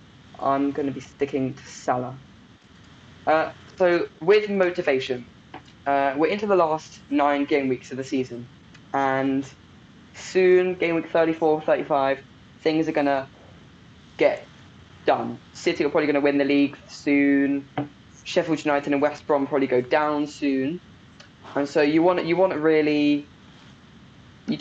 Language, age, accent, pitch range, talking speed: English, 10-29, British, 135-155 Hz, 150 wpm